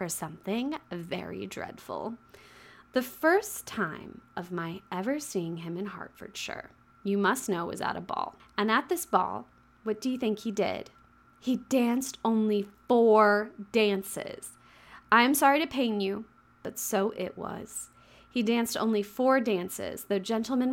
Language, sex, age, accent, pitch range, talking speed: English, female, 20-39, American, 185-225 Hz, 155 wpm